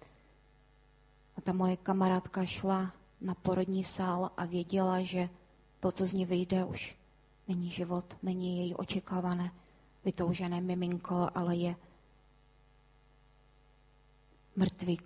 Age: 20-39